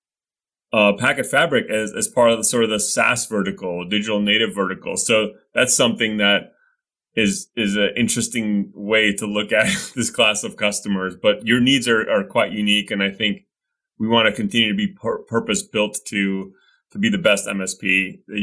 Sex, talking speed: male, 190 wpm